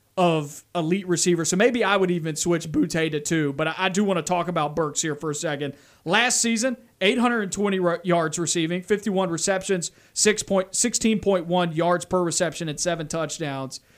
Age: 40-59